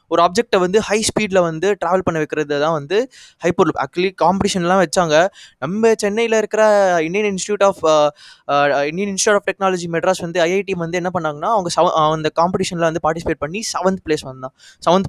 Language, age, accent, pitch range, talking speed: Tamil, 20-39, native, 150-200 Hz, 165 wpm